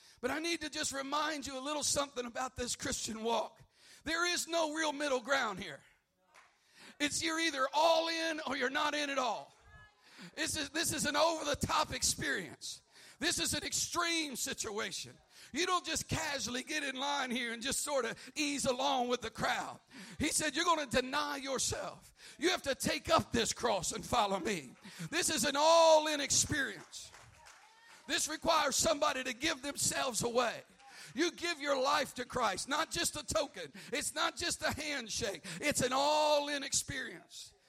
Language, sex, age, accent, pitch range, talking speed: English, male, 50-69, American, 245-300 Hz, 170 wpm